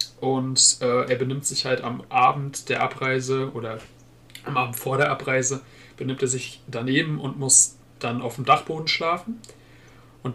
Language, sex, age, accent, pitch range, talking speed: German, male, 30-49, German, 125-145 Hz, 160 wpm